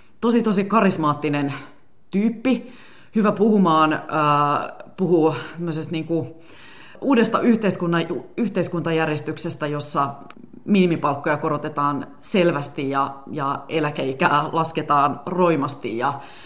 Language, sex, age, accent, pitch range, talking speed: Finnish, female, 30-49, native, 140-175 Hz, 75 wpm